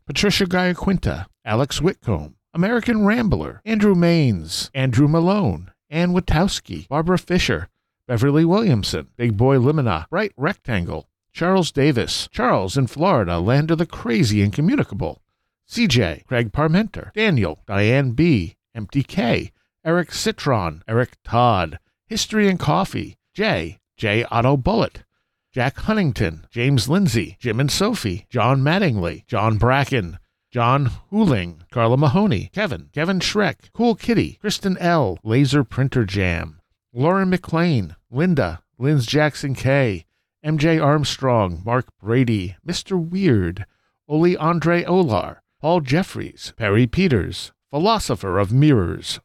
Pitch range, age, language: 105-175 Hz, 50-69, English